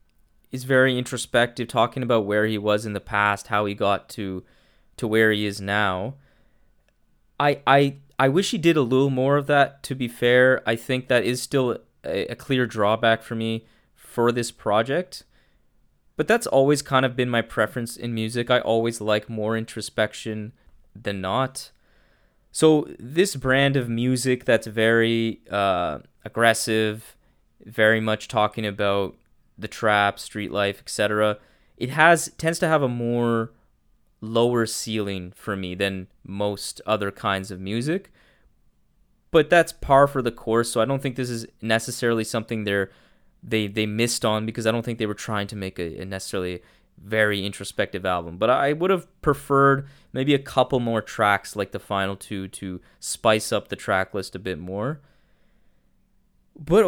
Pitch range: 105-130 Hz